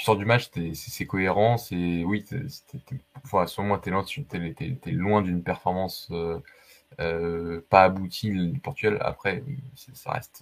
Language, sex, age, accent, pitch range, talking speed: French, male, 20-39, French, 85-105 Hz, 145 wpm